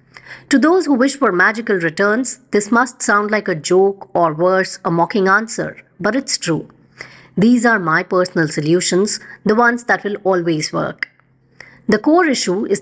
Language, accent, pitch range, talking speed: English, Indian, 180-230 Hz, 170 wpm